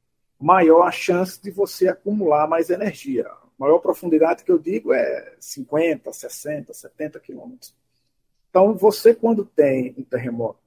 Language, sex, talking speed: Portuguese, male, 140 wpm